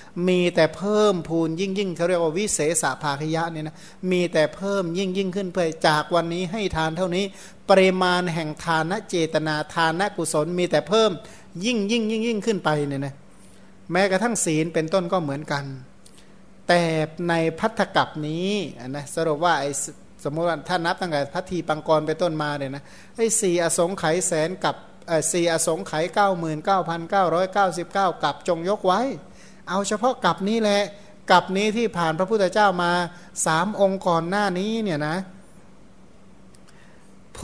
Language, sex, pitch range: Thai, male, 155-190 Hz